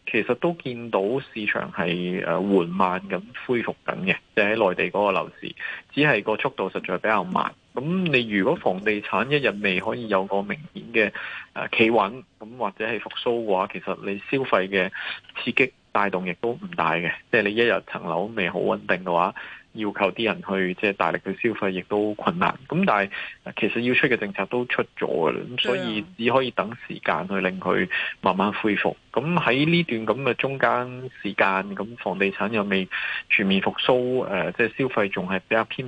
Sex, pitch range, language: male, 95-120 Hz, Chinese